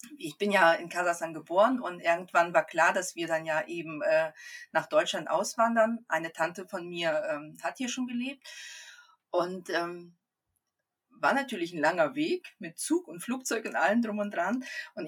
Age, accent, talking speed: 30-49, German, 180 wpm